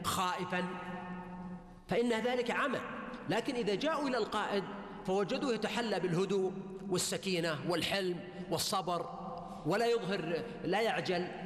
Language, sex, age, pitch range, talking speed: Arabic, male, 40-59, 185-230 Hz, 100 wpm